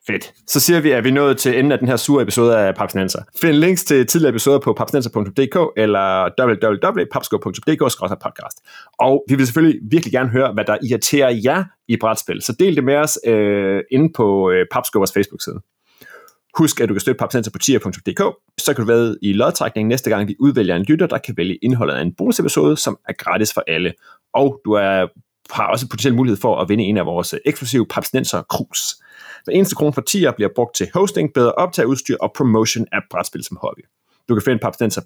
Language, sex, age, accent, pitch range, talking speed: Danish, male, 30-49, native, 105-140 Hz, 210 wpm